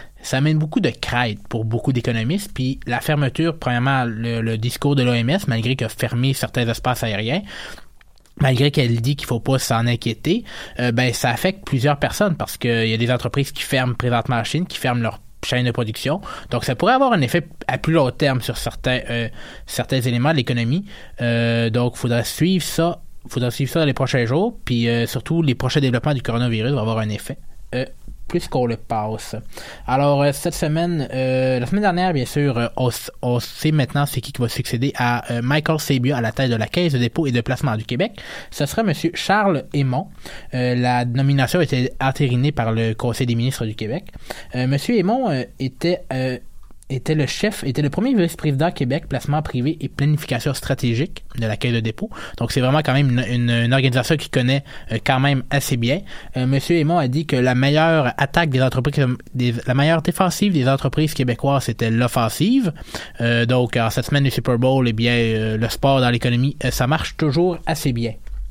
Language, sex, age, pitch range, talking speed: French, male, 20-39, 120-150 Hz, 205 wpm